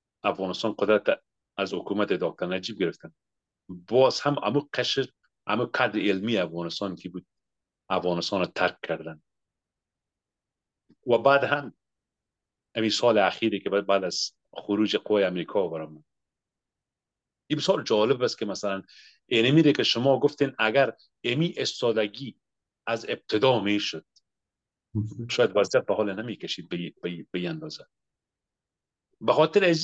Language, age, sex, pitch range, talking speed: English, 40-59, male, 95-145 Hz, 115 wpm